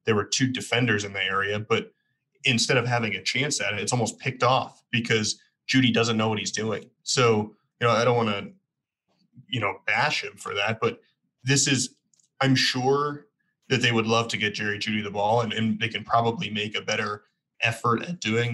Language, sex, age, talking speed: English, male, 20-39, 210 wpm